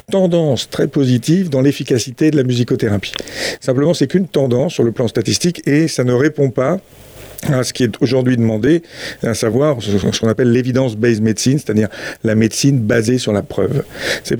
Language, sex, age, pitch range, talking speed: French, male, 50-69, 110-135 Hz, 175 wpm